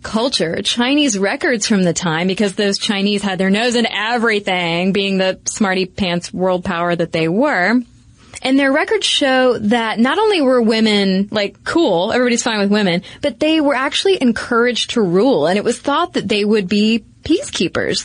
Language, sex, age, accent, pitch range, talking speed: English, female, 20-39, American, 200-265 Hz, 180 wpm